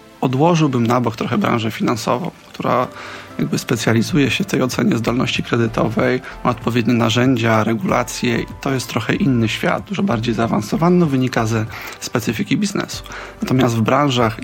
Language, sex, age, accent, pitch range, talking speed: Polish, male, 30-49, native, 115-135 Hz, 145 wpm